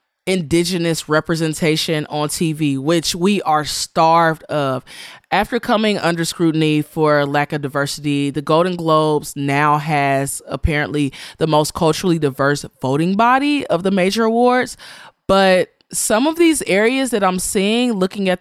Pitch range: 150-200 Hz